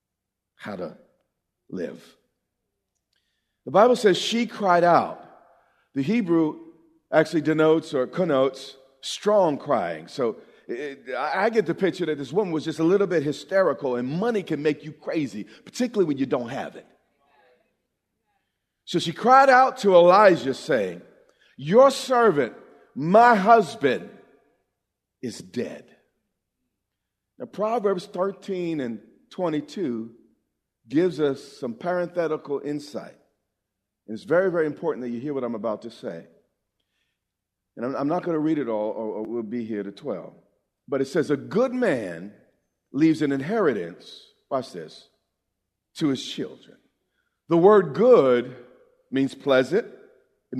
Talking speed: 135 wpm